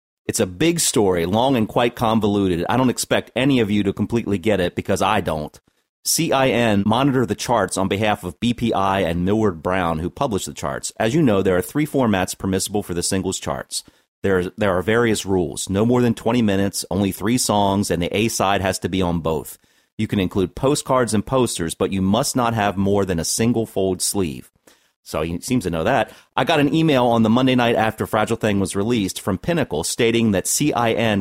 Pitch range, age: 95-120 Hz, 30-49